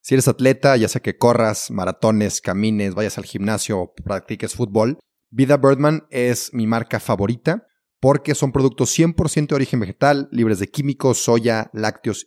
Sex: male